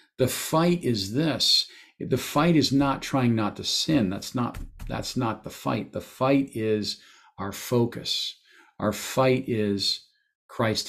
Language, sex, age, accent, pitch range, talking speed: English, male, 50-69, American, 110-125 Hz, 150 wpm